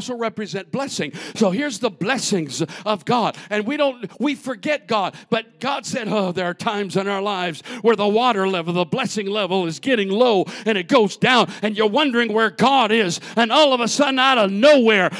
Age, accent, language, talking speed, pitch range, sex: 50-69, American, English, 210 wpm, 210-325 Hz, male